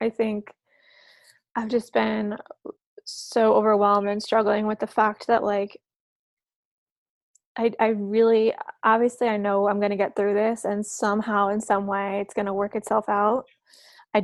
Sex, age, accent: female, 20-39, American